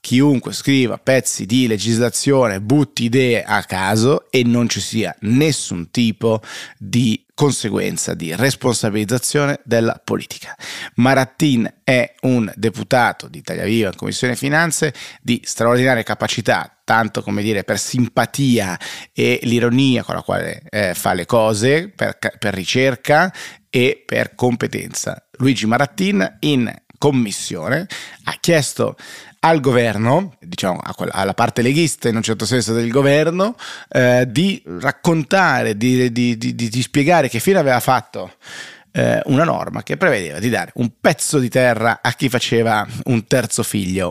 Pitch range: 110-135 Hz